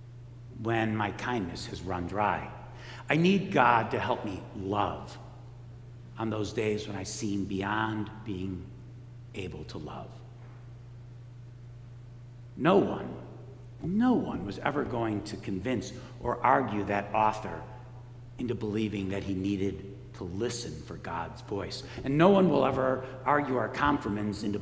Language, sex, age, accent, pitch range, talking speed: English, male, 60-79, American, 110-130 Hz, 135 wpm